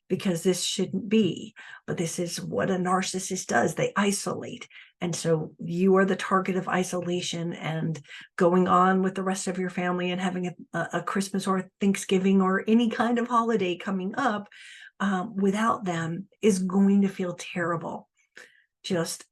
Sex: female